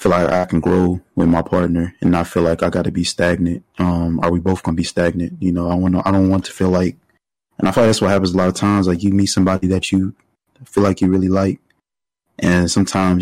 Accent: American